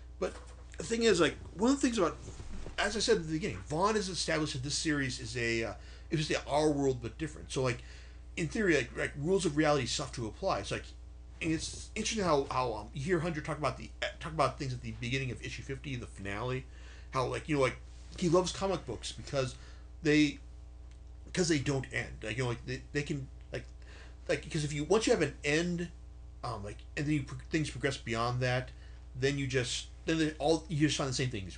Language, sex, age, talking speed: English, male, 40-59, 240 wpm